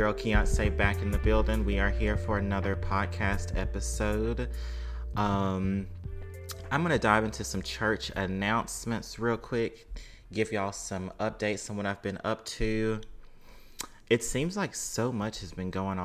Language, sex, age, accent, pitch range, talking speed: English, male, 30-49, American, 95-110 Hz, 155 wpm